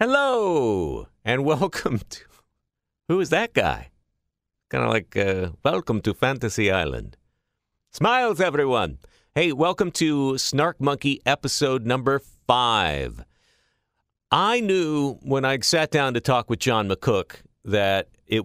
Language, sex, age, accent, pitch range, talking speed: English, male, 50-69, American, 95-135 Hz, 125 wpm